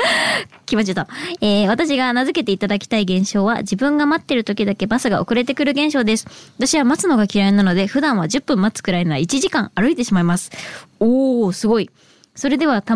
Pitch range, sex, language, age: 215-285 Hz, male, Japanese, 20-39